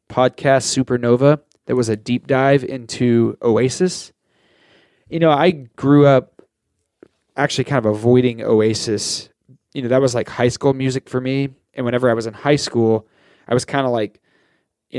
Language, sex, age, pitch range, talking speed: English, male, 20-39, 120-140 Hz, 170 wpm